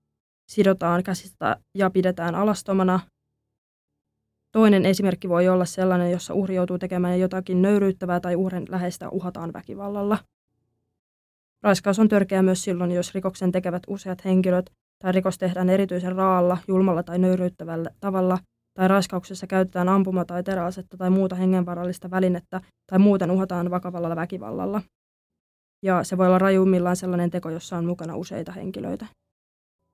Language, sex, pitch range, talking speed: Finnish, female, 165-190 Hz, 130 wpm